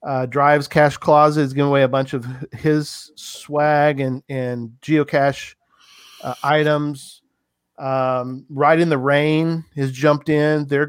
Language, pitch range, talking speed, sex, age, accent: English, 130-150 Hz, 145 wpm, male, 40-59, American